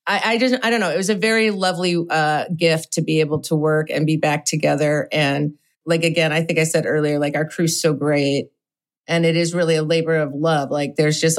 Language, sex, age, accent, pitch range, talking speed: English, female, 30-49, American, 150-180 Hz, 235 wpm